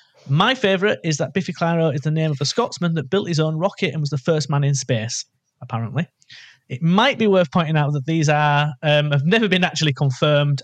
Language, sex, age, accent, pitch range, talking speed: English, male, 30-49, British, 135-185 Hz, 225 wpm